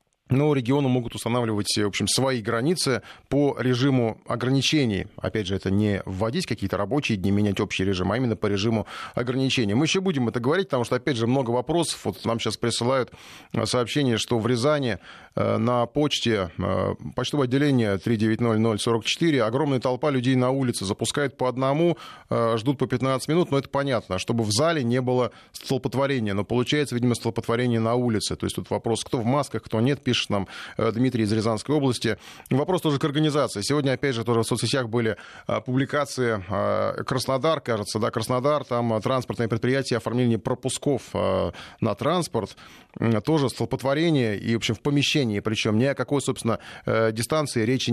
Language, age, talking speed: Russian, 20-39, 165 wpm